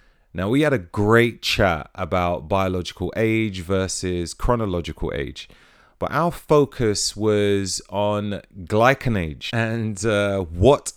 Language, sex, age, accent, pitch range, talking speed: English, male, 30-49, British, 90-115 Hz, 120 wpm